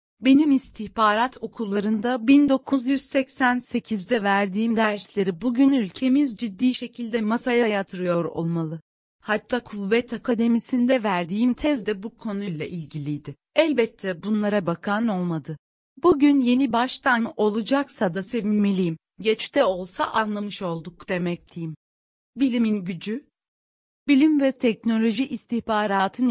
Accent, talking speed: native, 100 wpm